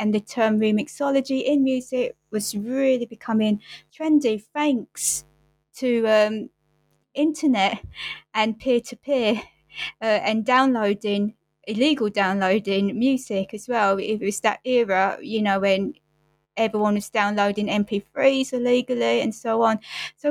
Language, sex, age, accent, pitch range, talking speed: English, female, 20-39, British, 205-250 Hz, 115 wpm